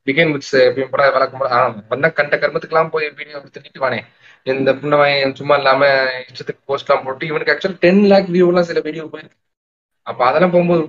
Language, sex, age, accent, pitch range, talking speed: Tamil, male, 20-39, native, 125-175 Hz, 105 wpm